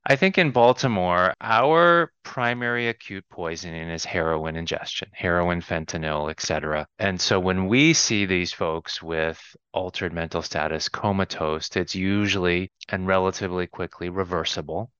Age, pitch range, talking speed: 30-49, 85-100 Hz, 130 wpm